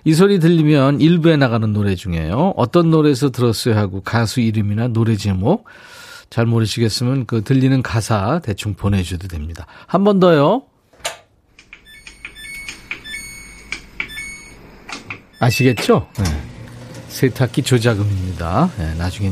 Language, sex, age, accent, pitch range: Korean, male, 40-59, native, 100-150 Hz